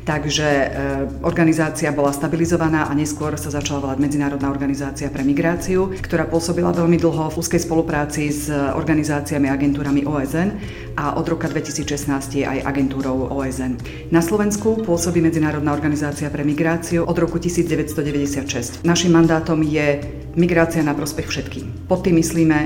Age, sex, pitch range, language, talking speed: 40-59, female, 145-165 Hz, Slovak, 140 wpm